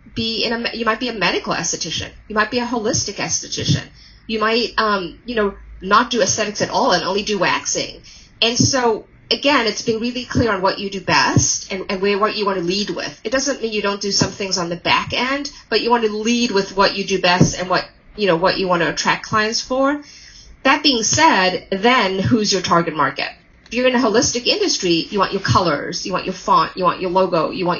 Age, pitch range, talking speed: 30-49, 185-235 Hz, 240 wpm